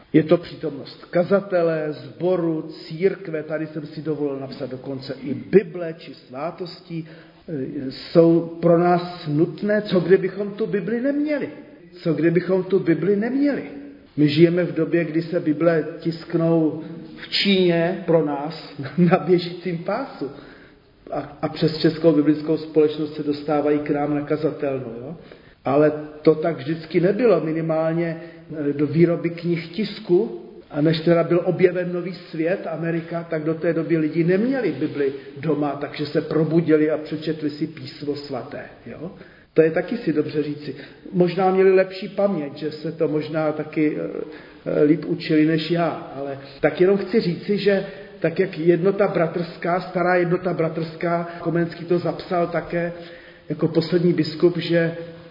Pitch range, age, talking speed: 155-175 Hz, 40-59, 140 wpm